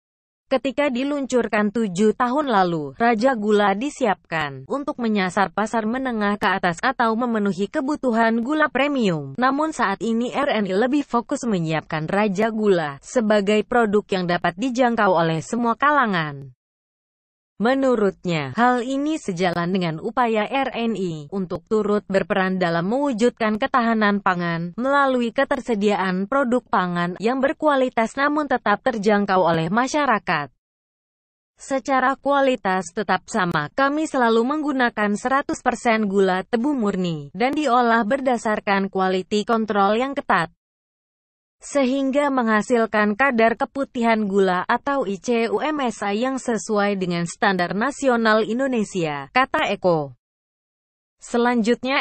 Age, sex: 20-39, female